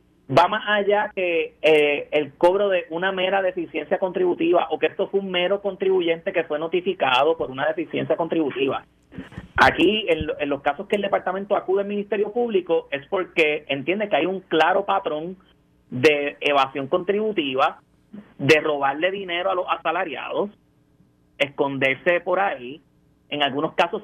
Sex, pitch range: male, 145-195 Hz